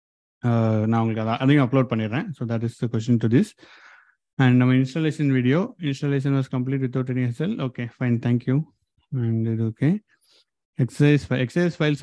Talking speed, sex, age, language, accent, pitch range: 145 wpm, male, 30-49, Tamil, native, 125-150 Hz